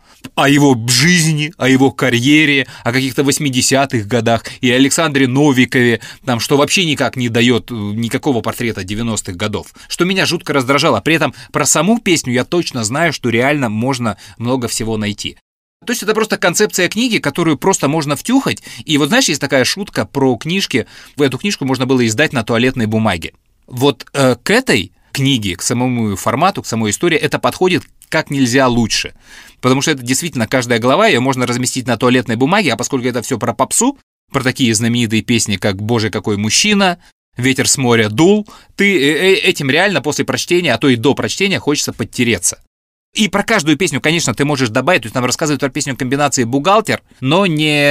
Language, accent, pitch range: Russian, native, 115-150 Hz